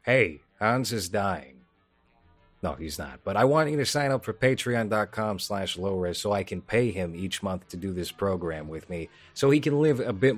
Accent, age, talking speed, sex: American, 30-49, 210 wpm, male